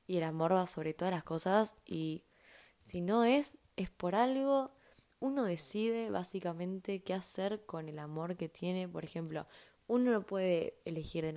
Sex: female